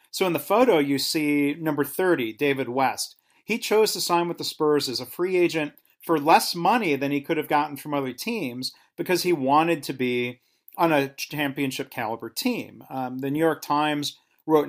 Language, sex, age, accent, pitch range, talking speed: English, male, 40-59, American, 130-170 Hz, 190 wpm